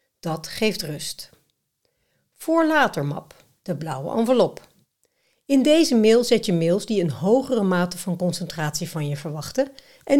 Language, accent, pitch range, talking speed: Dutch, Dutch, 160-235 Hz, 145 wpm